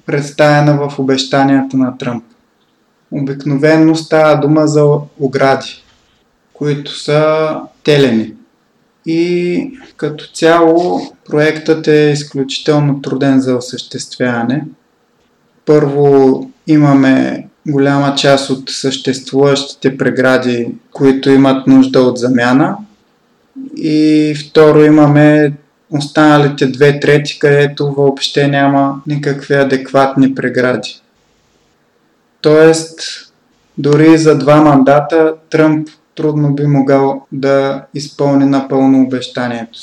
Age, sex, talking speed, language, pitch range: 20-39, male, 90 wpm, Bulgarian, 135-150 Hz